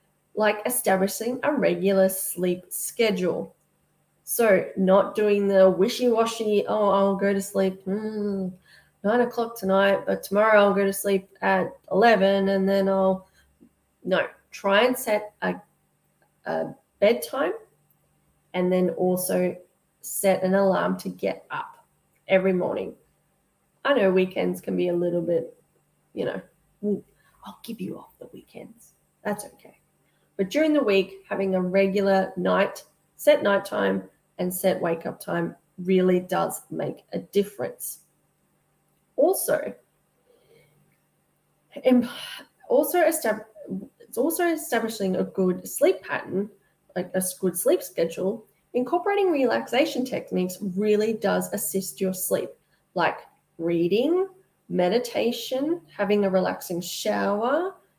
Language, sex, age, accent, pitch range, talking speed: English, female, 20-39, Australian, 185-230 Hz, 120 wpm